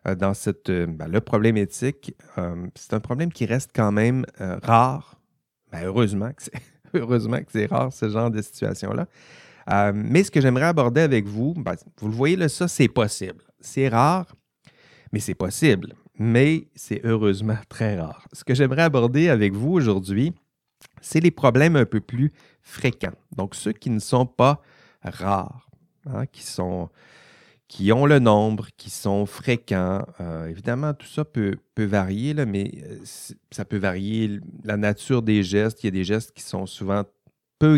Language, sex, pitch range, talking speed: French, male, 100-130 Hz, 175 wpm